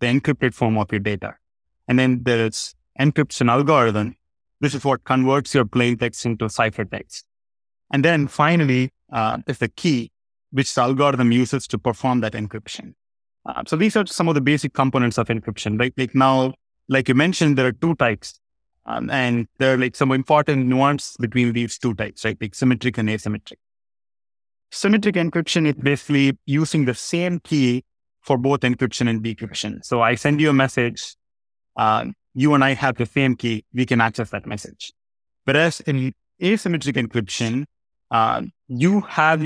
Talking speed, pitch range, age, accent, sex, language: 170 wpm, 115-140 Hz, 30-49, Indian, male, English